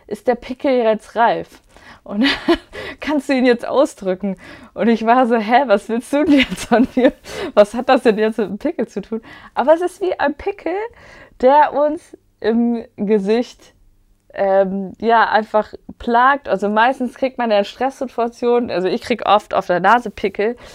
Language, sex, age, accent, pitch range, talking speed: German, female, 20-39, German, 210-270 Hz, 180 wpm